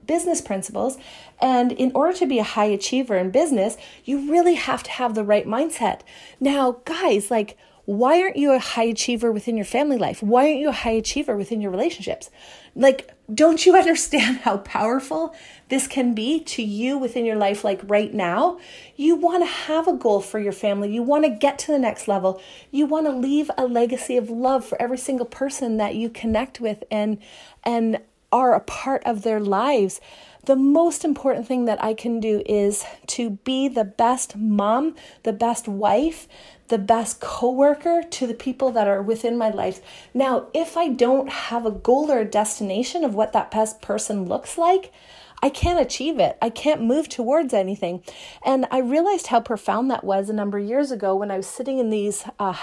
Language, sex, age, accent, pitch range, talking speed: English, female, 30-49, American, 215-285 Hz, 195 wpm